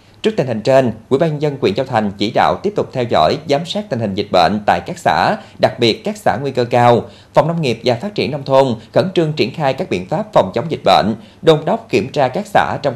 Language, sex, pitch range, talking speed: Vietnamese, male, 110-155 Hz, 275 wpm